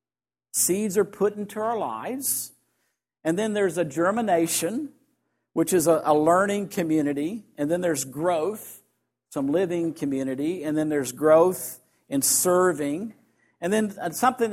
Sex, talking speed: male, 135 wpm